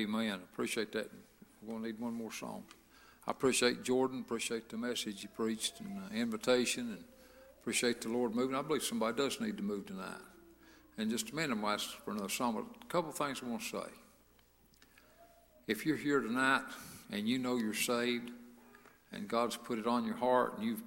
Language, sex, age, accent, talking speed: English, male, 60-79, American, 195 wpm